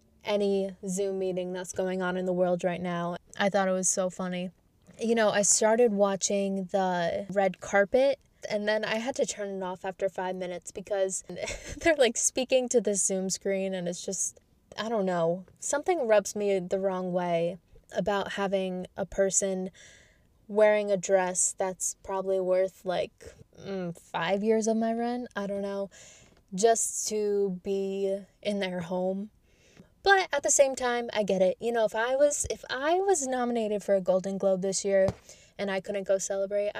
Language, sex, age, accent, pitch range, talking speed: English, female, 20-39, American, 190-220 Hz, 180 wpm